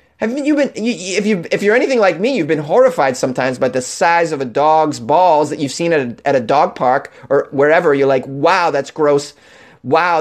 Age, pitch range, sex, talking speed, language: 30-49, 135-215 Hz, male, 230 wpm, English